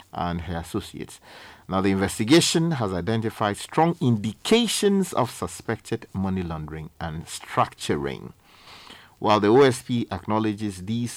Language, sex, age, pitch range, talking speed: English, male, 50-69, 85-115 Hz, 115 wpm